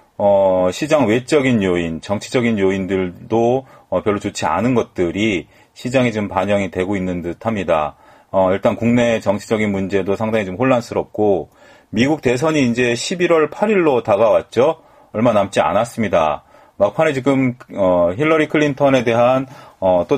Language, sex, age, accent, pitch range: Korean, male, 30-49, native, 100-135 Hz